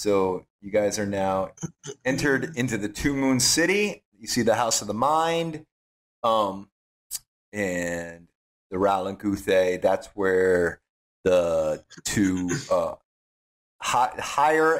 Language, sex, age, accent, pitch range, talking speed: English, male, 30-49, American, 90-130 Hz, 120 wpm